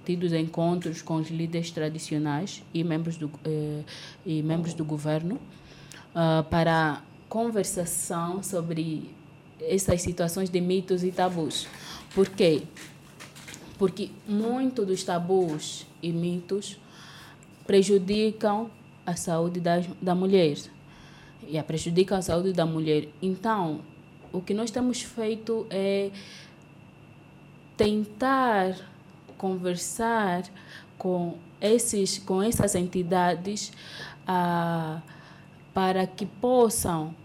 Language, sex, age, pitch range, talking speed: Portuguese, female, 20-39, 160-200 Hz, 100 wpm